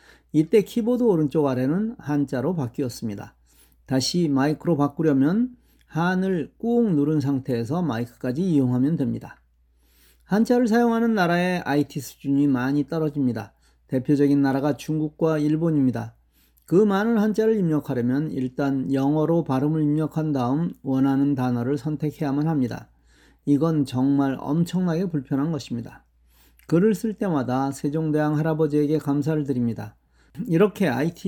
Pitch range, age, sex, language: 130-170 Hz, 40-59, male, Korean